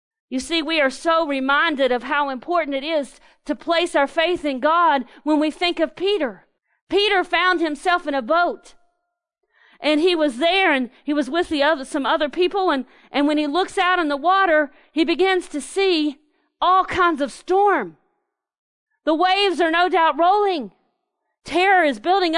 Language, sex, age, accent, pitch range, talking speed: English, female, 40-59, American, 305-390 Hz, 175 wpm